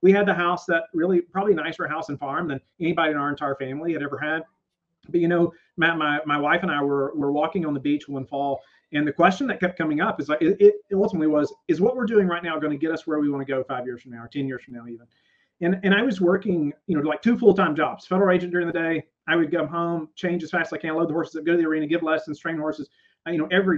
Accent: American